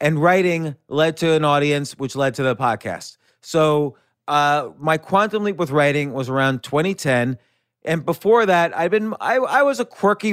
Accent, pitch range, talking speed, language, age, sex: American, 135-175 Hz, 180 wpm, English, 30-49, male